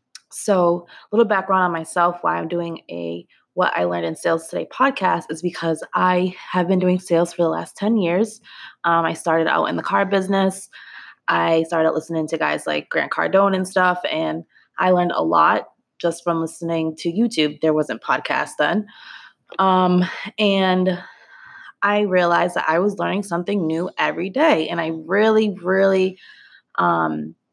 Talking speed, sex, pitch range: 170 wpm, female, 165-195 Hz